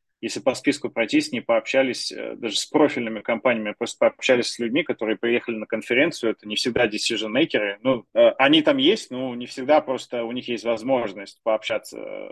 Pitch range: 110-140 Hz